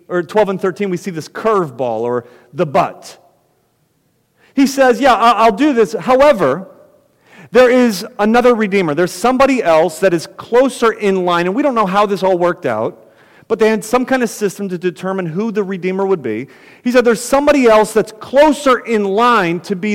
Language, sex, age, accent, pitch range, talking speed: English, male, 40-59, American, 180-250 Hz, 195 wpm